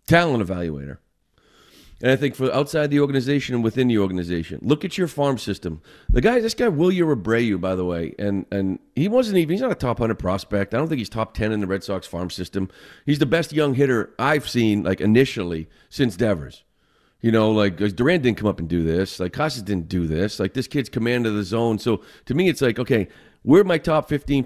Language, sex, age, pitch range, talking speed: English, male, 40-59, 100-140 Hz, 230 wpm